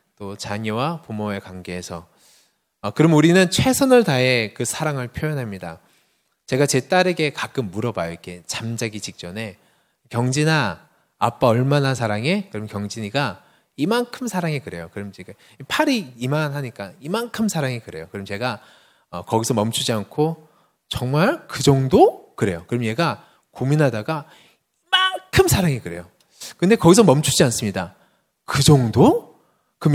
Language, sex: Korean, male